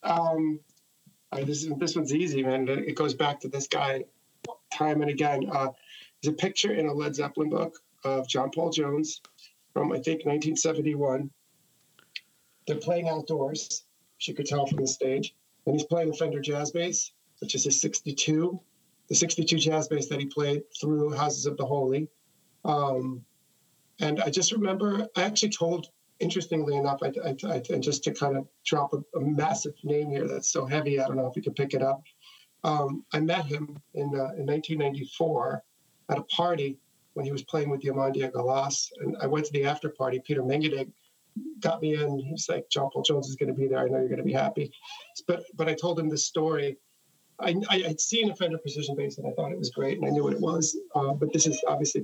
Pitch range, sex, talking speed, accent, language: 140-165 Hz, male, 210 wpm, American, English